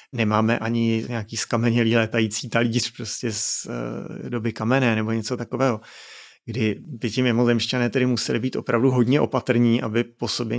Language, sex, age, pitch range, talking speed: Czech, male, 30-49, 115-125 Hz, 155 wpm